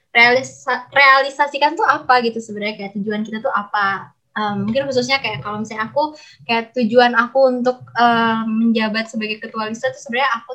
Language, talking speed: Indonesian, 170 wpm